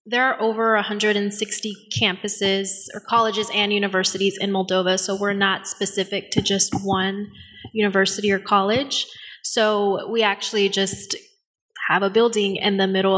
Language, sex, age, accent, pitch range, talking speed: English, female, 20-39, American, 190-220 Hz, 140 wpm